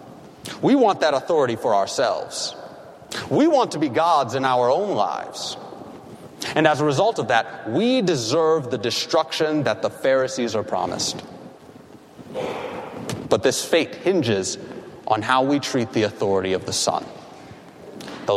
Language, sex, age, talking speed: English, male, 30-49, 145 wpm